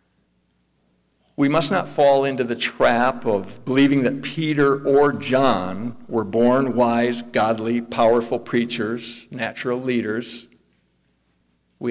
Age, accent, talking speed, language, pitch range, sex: 60-79, American, 110 wpm, English, 115-140 Hz, male